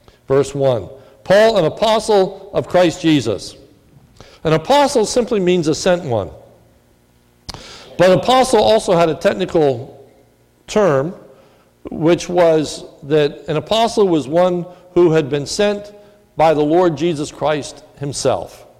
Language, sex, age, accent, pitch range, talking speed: English, male, 60-79, American, 130-175 Hz, 125 wpm